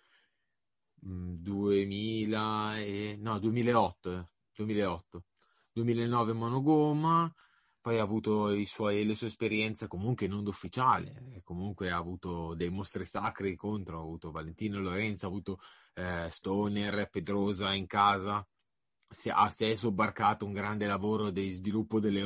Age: 30-49